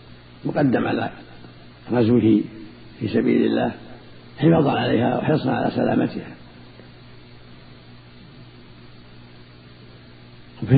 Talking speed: 65 wpm